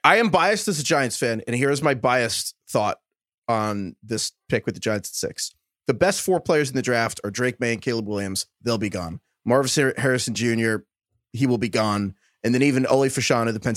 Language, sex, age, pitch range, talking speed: English, male, 30-49, 115-155 Hz, 220 wpm